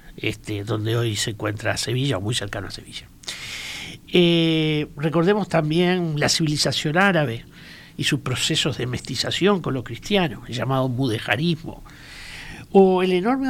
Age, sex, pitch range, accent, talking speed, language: 60-79, male, 125-175 Hz, Argentinian, 135 wpm, Spanish